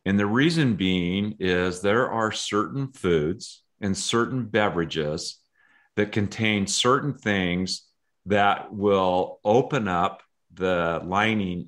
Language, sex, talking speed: English, male, 115 wpm